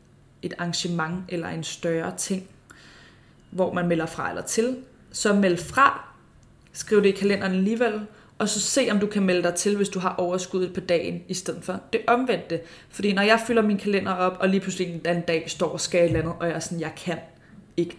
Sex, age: female, 20-39